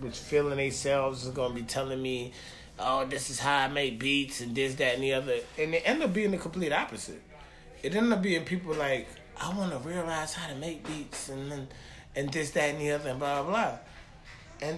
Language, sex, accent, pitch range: English, male, American, 130-175 Hz